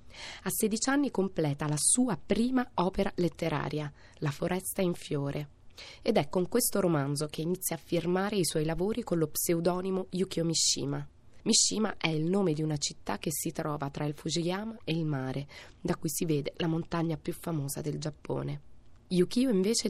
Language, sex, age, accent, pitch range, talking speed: Italian, female, 20-39, native, 150-190 Hz, 175 wpm